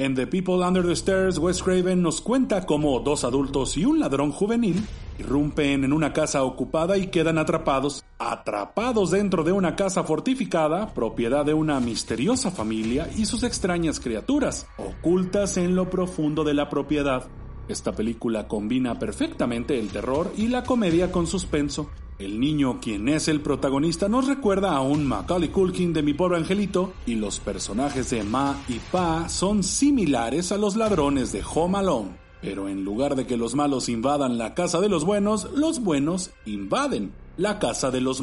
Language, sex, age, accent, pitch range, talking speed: Spanish, male, 40-59, Mexican, 130-185 Hz, 170 wpm